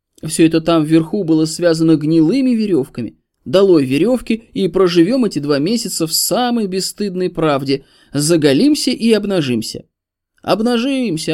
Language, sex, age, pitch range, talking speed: Russian, male, 20-39, 140-205 Hz, 120 wpm